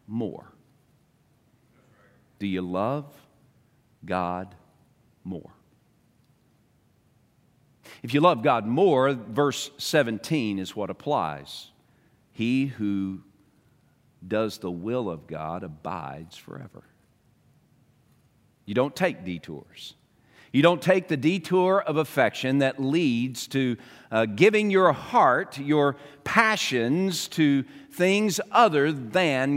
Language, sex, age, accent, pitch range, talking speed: English, male, 50-69, American, 105-145 Hz, 100 wpm